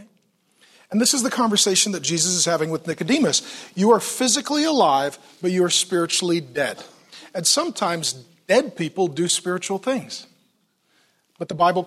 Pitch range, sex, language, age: 170-235 Hz, male, English, 40-59